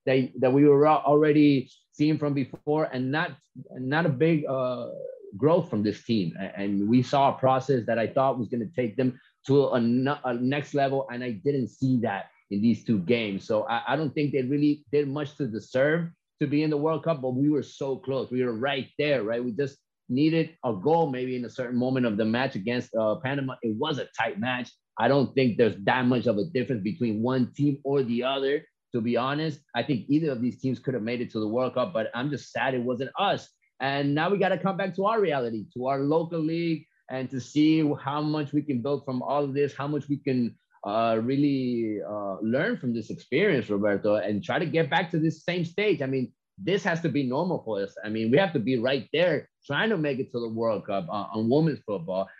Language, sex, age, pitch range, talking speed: English, male, 30-49, 120-150 Hz, 235 wpm